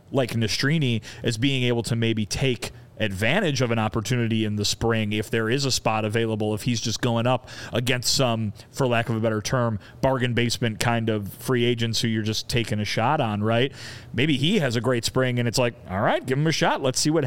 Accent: American